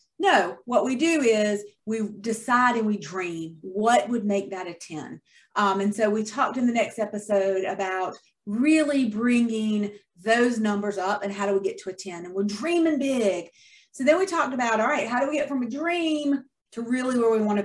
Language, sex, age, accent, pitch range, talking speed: English, female, 30-49, American, 205-265 Hz, 210 wpm